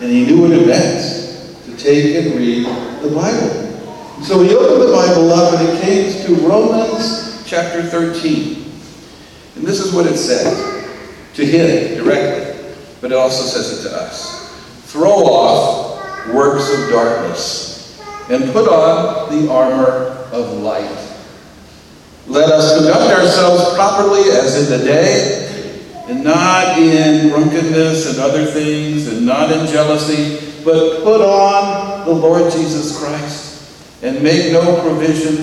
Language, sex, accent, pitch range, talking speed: English, male, American, 150-180 Hz, 140 wpm